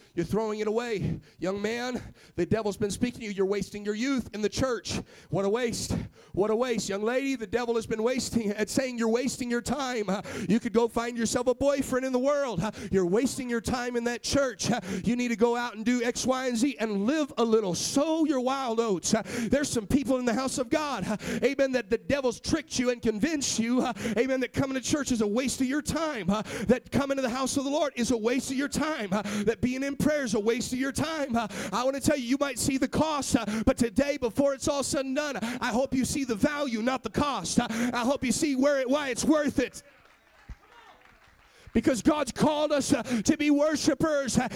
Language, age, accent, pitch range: English, 40-59, American, 230-275 Hz